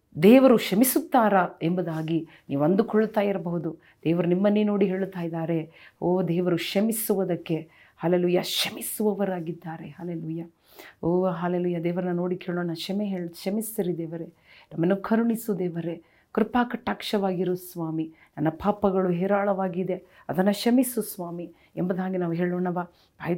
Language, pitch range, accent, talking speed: Kannada, 175-220 Hz, native, 105 wpm